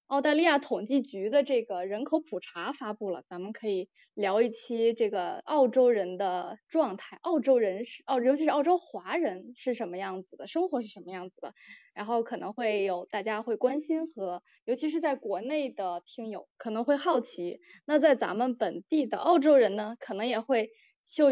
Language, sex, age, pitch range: Chinese, female, 20-39, 220-315 Hz